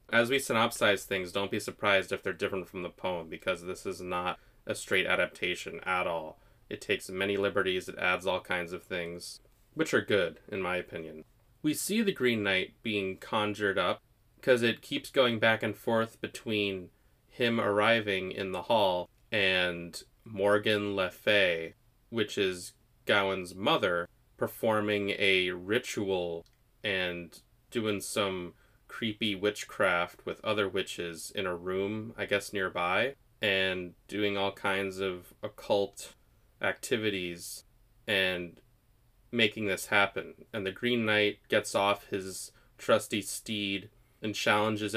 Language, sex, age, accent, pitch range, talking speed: English, male, 30-49, American, 95-115 Hz, 140 wpm